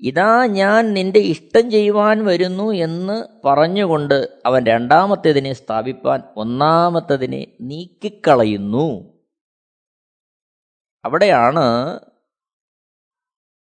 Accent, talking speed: native, 60 wpm